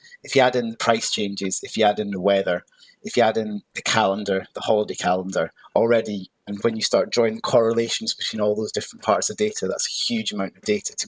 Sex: male